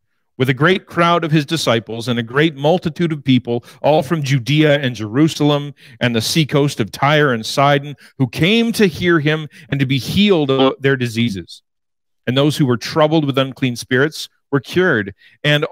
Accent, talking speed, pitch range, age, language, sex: American, 185 wpm, 115-155 Hz, 40-59, English, male